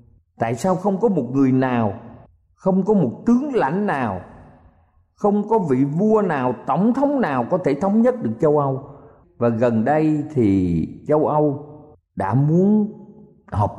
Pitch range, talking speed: 120-185 Hz, 160 wpm